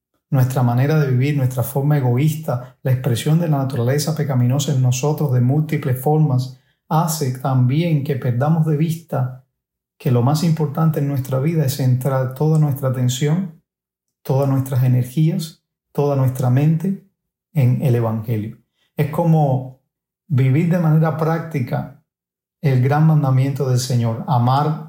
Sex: male